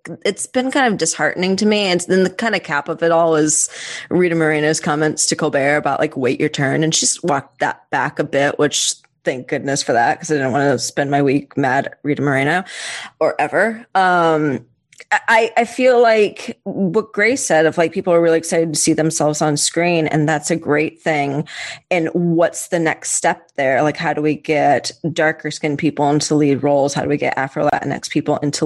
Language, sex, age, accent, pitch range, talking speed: English, female, 20-39, American, 150-185 Hz, 210 wpm